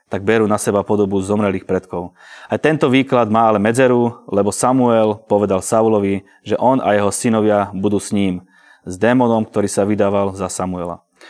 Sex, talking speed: male, 170 wpm